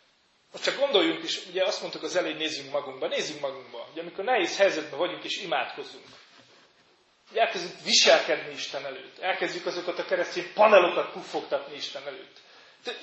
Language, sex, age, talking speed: Hungarian, male, 30-49, 150 wpm